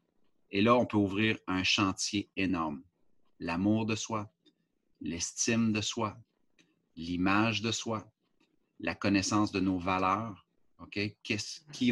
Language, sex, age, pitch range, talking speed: French, male, 30-49, 95-110 Hz, 120 wpm